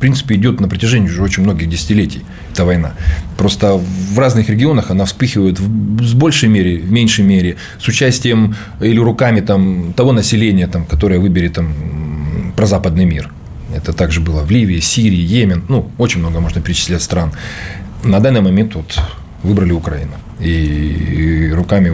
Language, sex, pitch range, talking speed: Russian, male, 85-105 Hz, 160 wpm